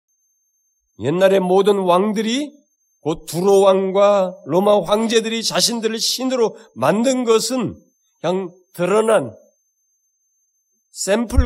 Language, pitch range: Korean, 180-255 Hz